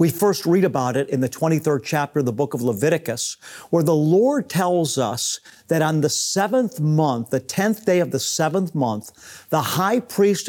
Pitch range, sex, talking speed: 145-185 Hz, male, 195 wpm